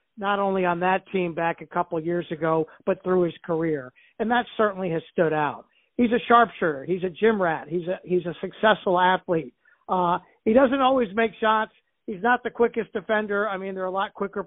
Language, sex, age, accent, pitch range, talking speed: English, male, 50-69, American, 170-205 Hz, 220 wpm